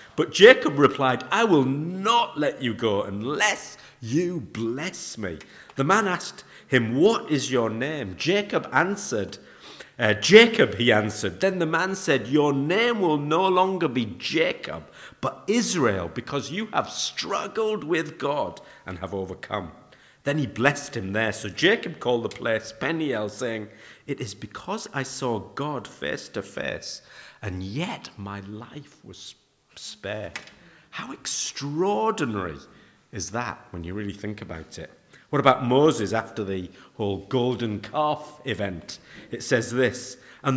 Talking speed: 145 wpm